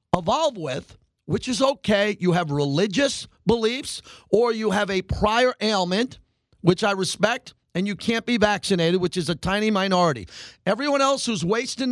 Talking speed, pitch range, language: 160 wpm, 165-215 Hz, English